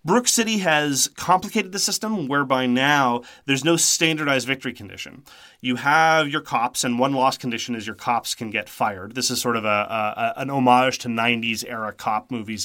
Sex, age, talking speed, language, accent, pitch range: male, 30-49, 185 wpm, English, American, 115-150 Hz